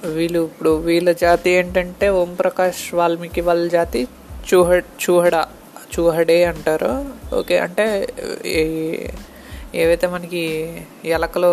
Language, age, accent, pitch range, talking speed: Telugu, 20-39, native, 165-185 Hz, 95 wpm